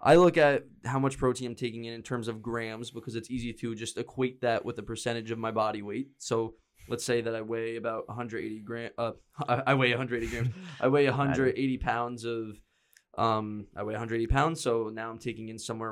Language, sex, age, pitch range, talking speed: English, male, 20-39, 110-125 Hz, 215 wpm